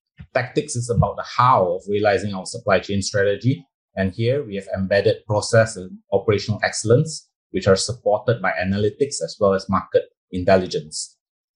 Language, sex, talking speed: English, male, 155 wpm